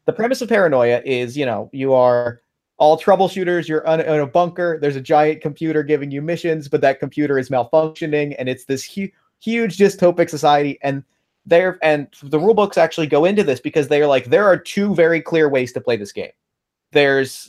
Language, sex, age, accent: English, male, 30-49, American